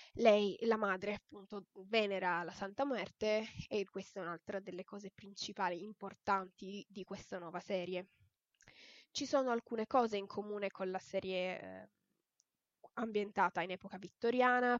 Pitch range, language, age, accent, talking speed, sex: 195-225 Hz, Italian, 10-29, native, 140 wpm, female